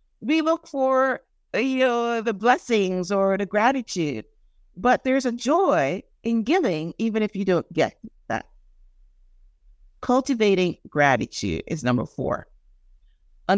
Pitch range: 170-235 Hz